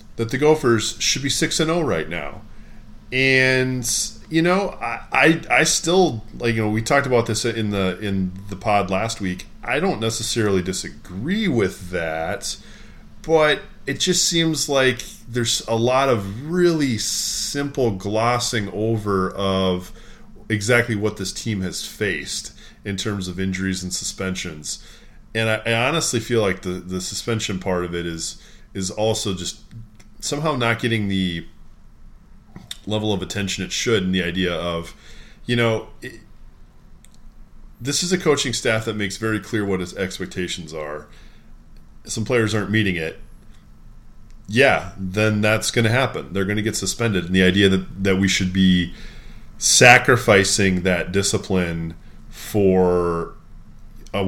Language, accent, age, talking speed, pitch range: English, American, 30-49, 150 wpm, 95-115 Hz